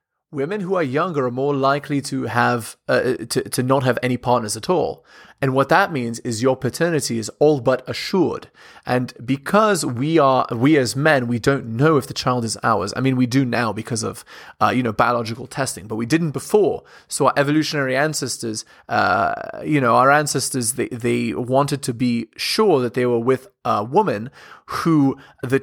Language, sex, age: English, male, 20-39